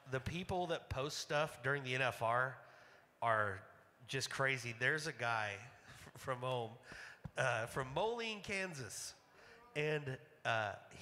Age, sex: 30-49, male